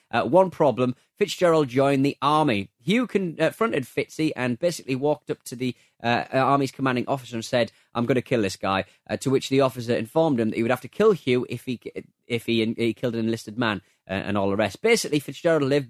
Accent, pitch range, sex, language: British, 110-145 Hz, male, English